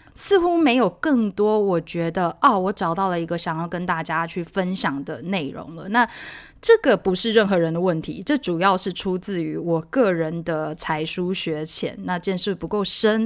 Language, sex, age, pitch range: Chinese, female, 20-39, 170-225 Hz